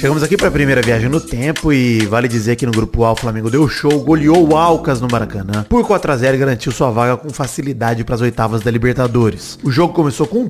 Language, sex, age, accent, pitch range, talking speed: Portuguese, male, 30-49, Brazilian, 140-195 Hz, 235 wpm